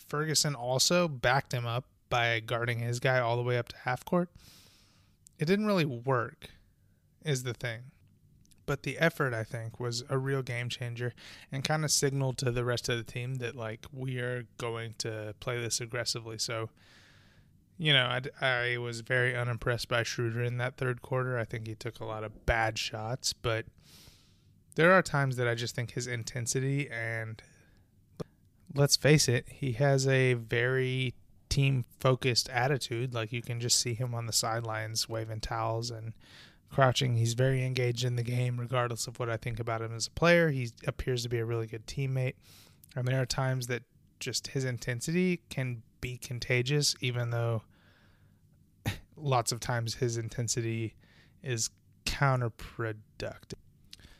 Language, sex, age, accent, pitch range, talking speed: English, male, 20-39, American, 115-130 Hz, 170 wpm